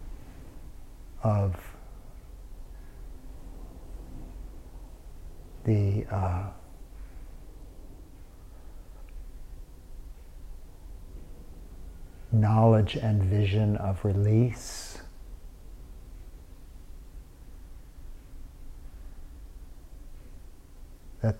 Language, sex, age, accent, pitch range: English, male, 50-69, American, 75-95 Hz